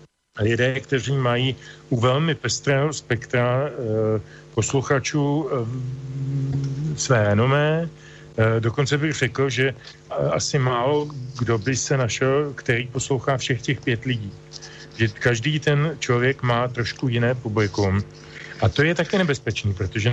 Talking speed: 135 wpm